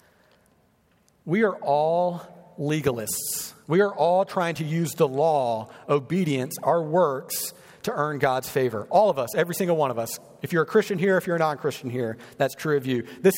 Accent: American